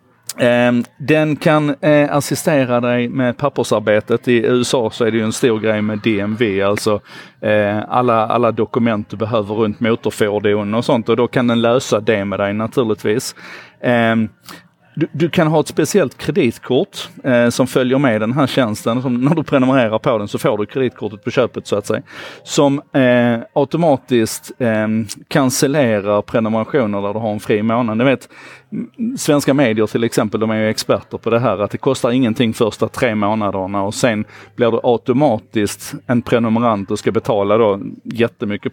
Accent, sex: native, male